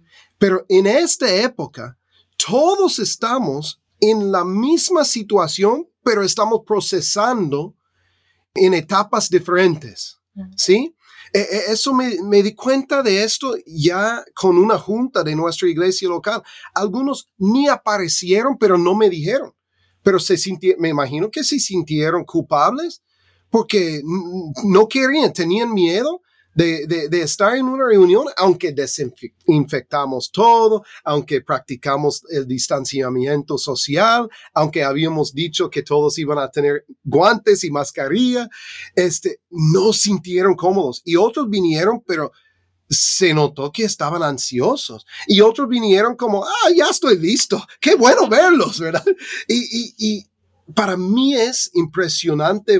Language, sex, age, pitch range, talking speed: English, male, 30-49, 160-225 Hz, 125 wpm